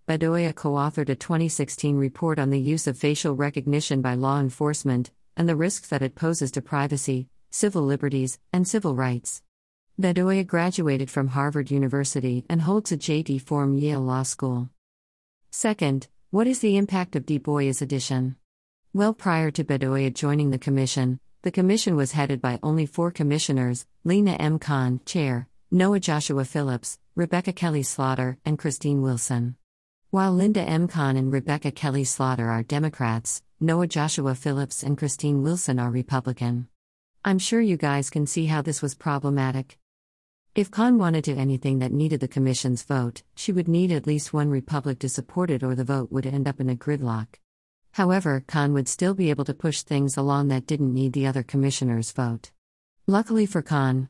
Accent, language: American, English